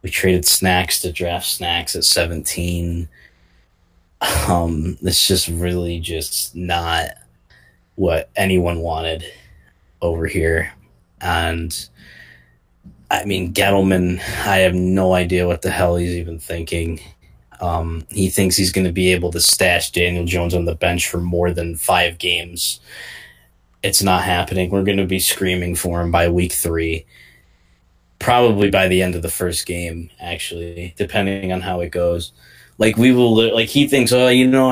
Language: English